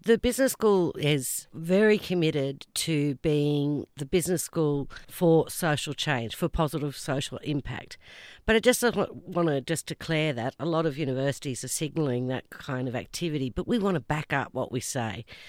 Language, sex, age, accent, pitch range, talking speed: English, female, 50-69, Australian, 140-170 Hz, 175 wpm